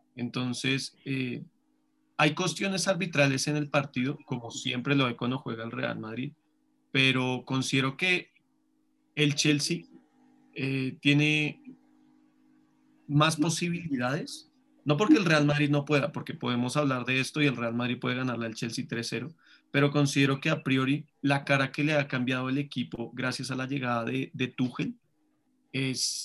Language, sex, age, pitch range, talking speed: Spanish, male, 30-49, 125-150 Hz, 155 wpm